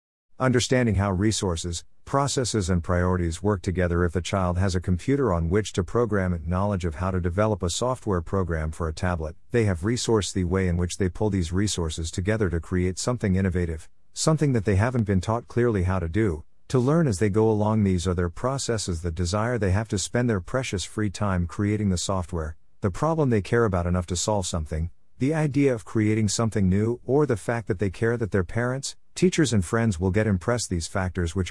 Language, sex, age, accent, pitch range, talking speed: English, male, 50-69, American, 85-110 Hz, 215 wpm